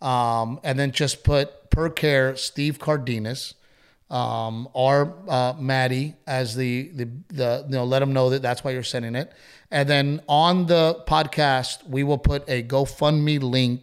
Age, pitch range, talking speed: 30-49, 120-140 Hz, 170 wpm